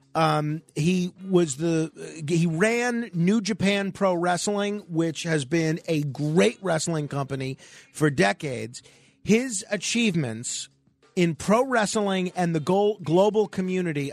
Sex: male